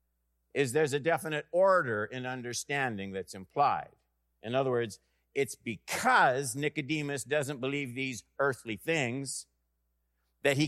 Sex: male